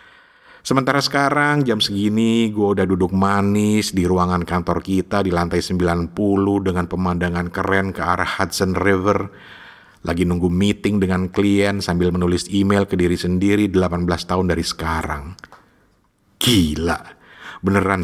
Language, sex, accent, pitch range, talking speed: Indonesian, male, native, 90-105 Hz, 130 wpm